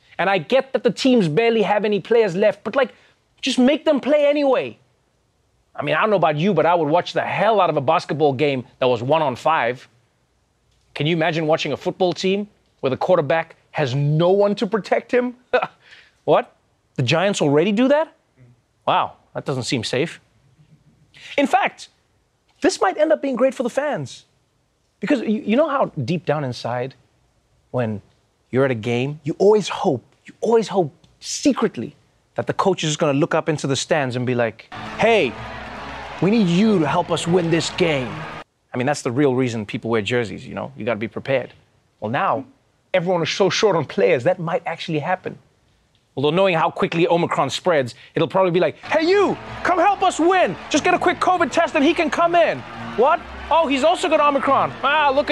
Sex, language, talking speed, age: male, English, 200 wpm, 30-49